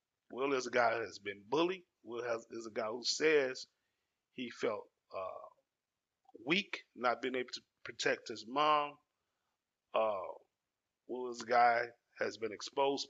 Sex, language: male, English